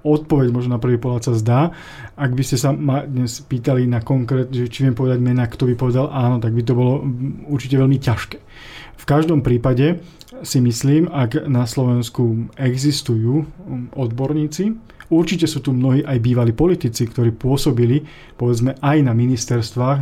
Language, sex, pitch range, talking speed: Slovak, male, 120-140 Hz, 160 wpm